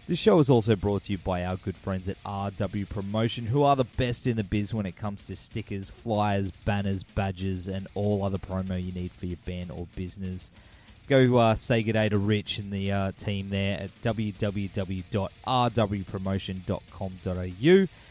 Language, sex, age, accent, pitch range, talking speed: English, male, 20-39, Australian, 95-115 Hz, 175 wpm